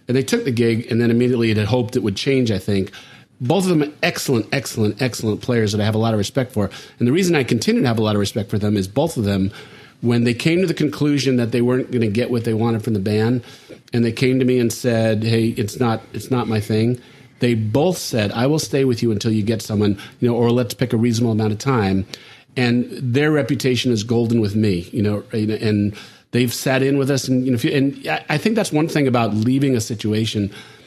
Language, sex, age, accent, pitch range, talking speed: English, male, 40-59, American, 110-135 Hz, 255 wpm